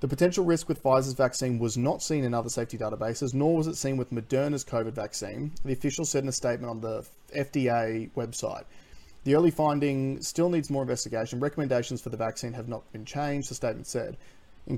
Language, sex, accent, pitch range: English, male, Australian, 115-140 Hz